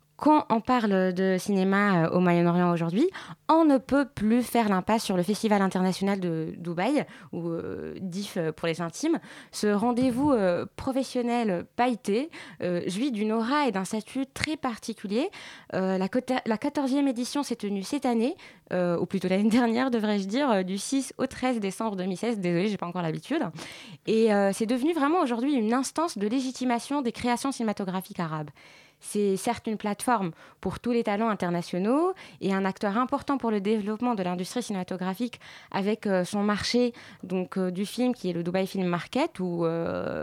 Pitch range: 190-245 Hz